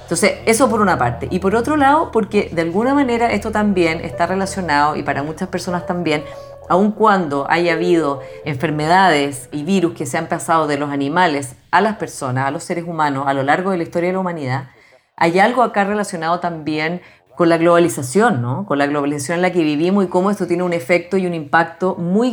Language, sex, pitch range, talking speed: Spanish, female, 155-200 Hz, 210 wpm